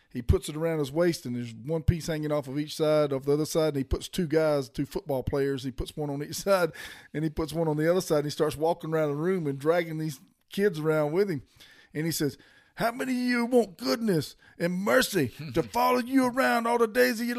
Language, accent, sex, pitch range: English, American, male, 150-220 Hz